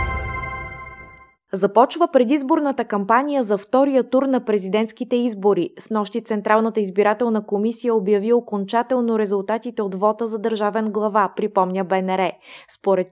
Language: Bulgarian